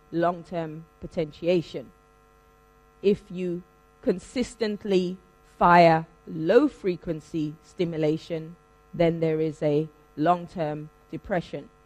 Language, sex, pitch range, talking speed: English, female, 155-195 Hz, 70 wpm